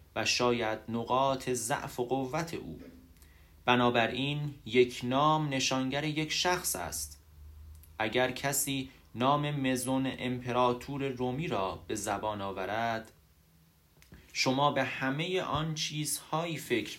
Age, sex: 30-49, male